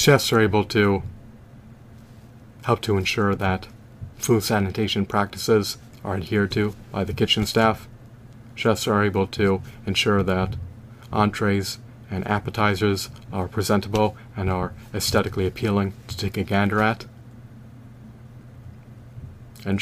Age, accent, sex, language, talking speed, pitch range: 30-49, American, male, English, 120 wpm, 100-115 Hz